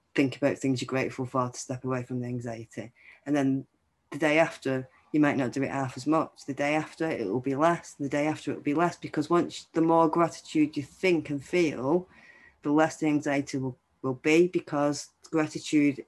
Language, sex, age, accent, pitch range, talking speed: English, female, 20-39, British, 135-160 Hz, 215 wpm